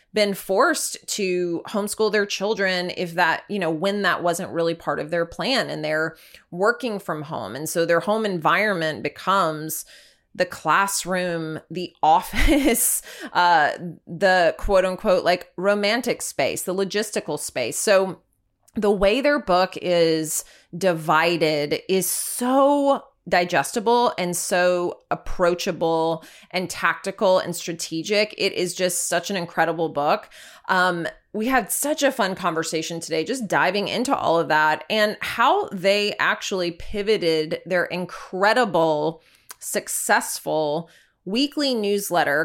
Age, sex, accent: 20-39, female, American